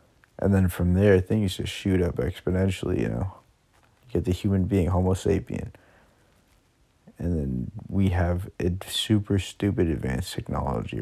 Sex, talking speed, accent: male, 145 wpm, American